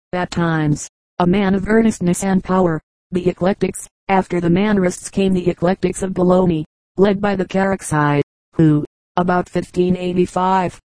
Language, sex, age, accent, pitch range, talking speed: English, female, 40-59, American, 175-195 Hz, 135 wpm